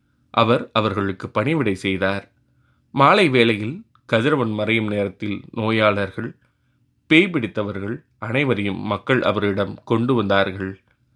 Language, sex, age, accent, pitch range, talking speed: Tamil, male, 30-49, native, 100-125 Hz, 90 wpm